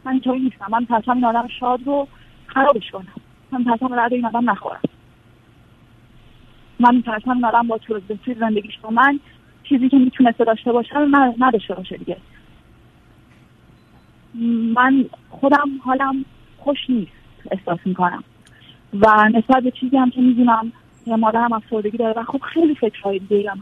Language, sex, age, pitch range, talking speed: Persian, female, 30-49, 220-270 Hz, 145 wpm